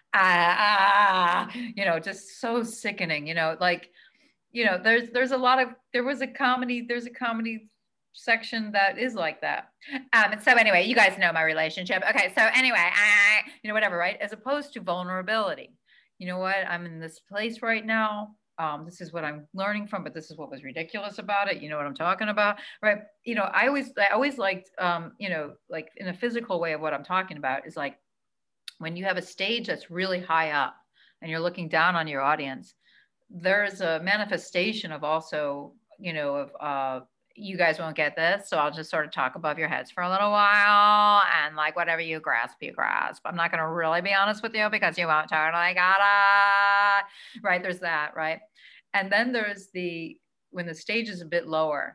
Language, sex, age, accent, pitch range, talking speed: English, female, 40-59, American, 160-210 Hz, 215 wpm